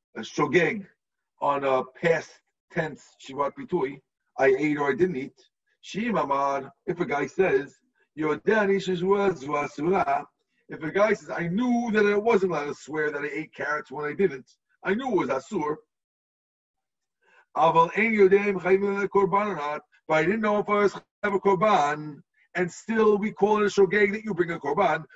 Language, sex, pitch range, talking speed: English, male, 155-210 Hz, 155 wpm